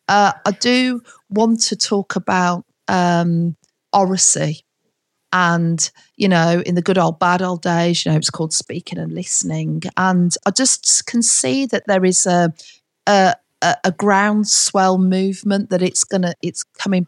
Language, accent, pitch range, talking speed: English, British, 170-200 Hz, 160 wpm